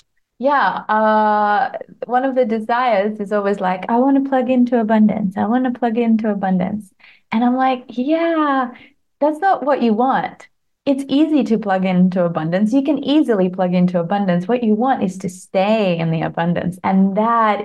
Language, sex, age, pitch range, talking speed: English, female, 20-39, 200-265 Hz, 180 wpm